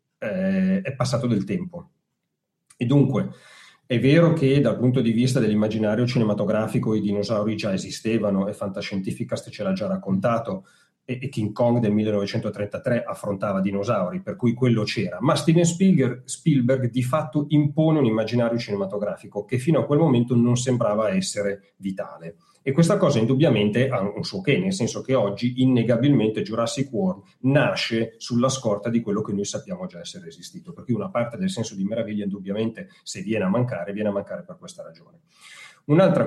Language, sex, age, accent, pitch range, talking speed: Italian, male, 30-49, native, 110-145 Hz, 170 wpm